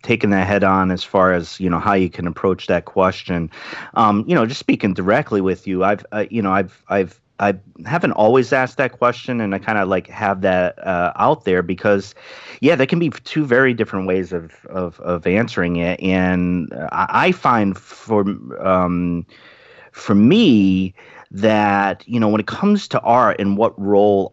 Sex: male